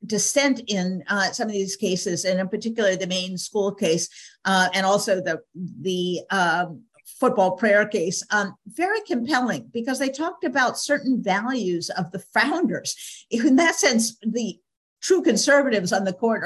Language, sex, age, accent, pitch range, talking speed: English, female, 50-69, American, 190-245 Hz, 160 wpm